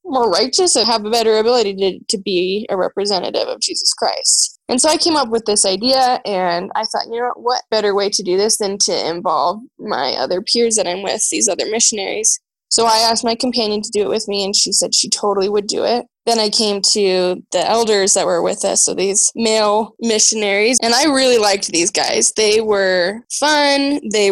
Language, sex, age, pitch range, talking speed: English, female, 10-29, 200-235 Hz, 215 wpm